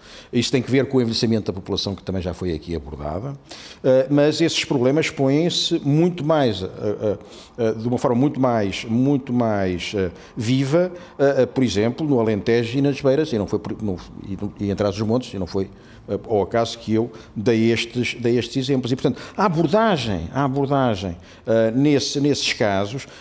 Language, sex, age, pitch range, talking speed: Portuguese, male, 50-69, 105-140 Hz, 195 wpm